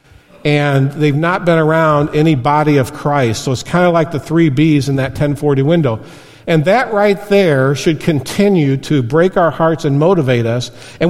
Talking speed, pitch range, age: 190 wpm, 140-180 Hz, 50-69